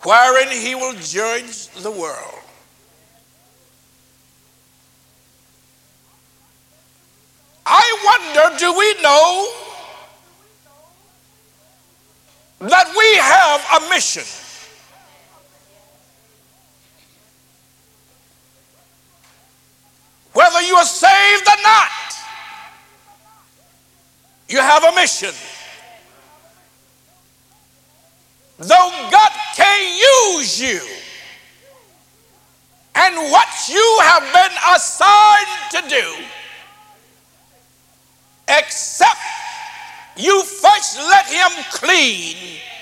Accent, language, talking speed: American, English, 60 wpm